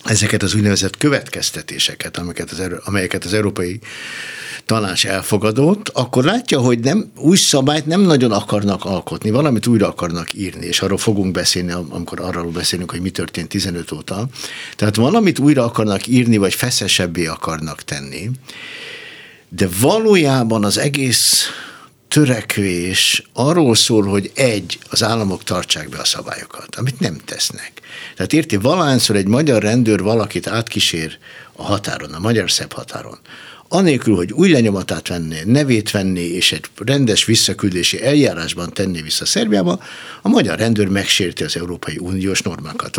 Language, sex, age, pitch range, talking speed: Hungarian, male, 60-79, 95-130 Hz, 140 wpm